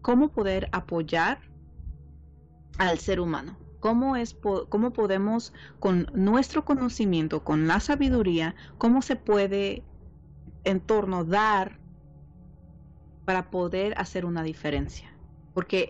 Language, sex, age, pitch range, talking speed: Spanish, female, 30-49, 165-235 Hz, 110 wpm